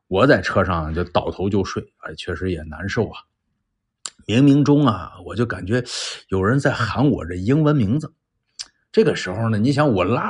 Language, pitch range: Chinese, 90-115 Hz